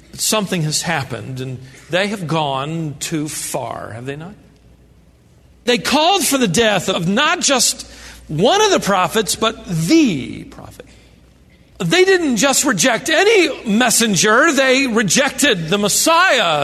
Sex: male